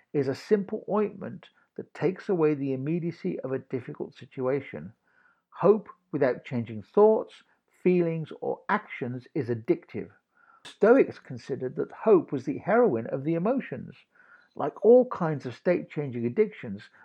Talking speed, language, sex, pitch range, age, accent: 135 wpm, English, male, 140-200 Hz, 60-79, British